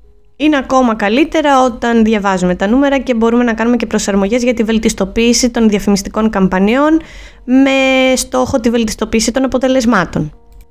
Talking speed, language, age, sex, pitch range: 140 wpm, Greek, 20-39, female, 210-260 Hz